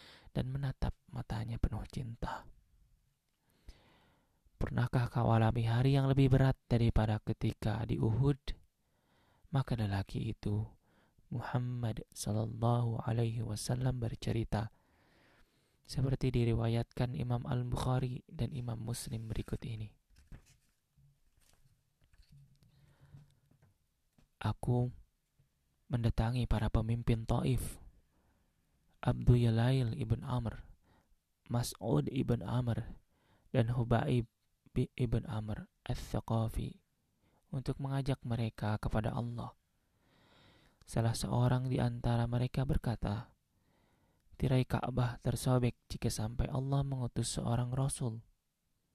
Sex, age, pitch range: male, 20-39, 110-130 Hz